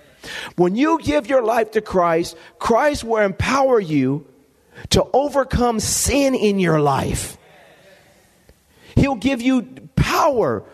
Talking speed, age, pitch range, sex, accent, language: 115 wpm, 40-59, 220-275 Hz, male, American, English